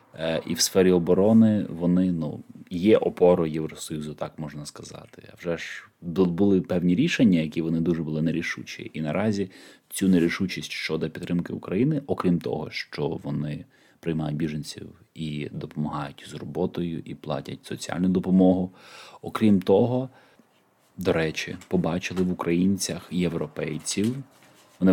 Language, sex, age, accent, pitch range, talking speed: Ukrainian, male, 20-39, native, 80-90 Hz, 130 wpm